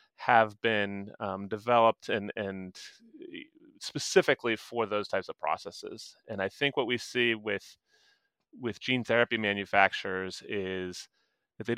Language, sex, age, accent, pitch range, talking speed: English, male, 30-49, American, 100-120 Hz, 135 wpm